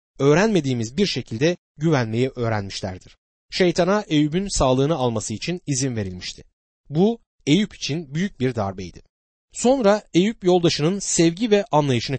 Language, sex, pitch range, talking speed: Turkish, male, 115-170 Hz, 120 wpm